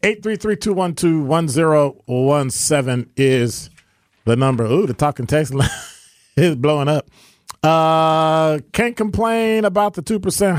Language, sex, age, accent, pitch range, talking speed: English, male, 40-59, American, 120-160 Hz, 155 wpm